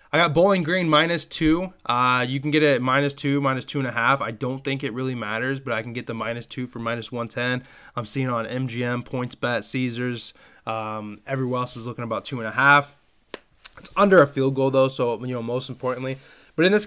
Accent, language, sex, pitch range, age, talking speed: American, English, male, 115-140 Hz, 20-39, 230 wpm